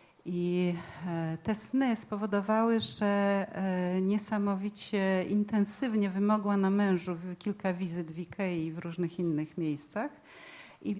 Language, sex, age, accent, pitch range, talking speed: Polish, female, 40-59, native, 165-205 Hz, 110 wpm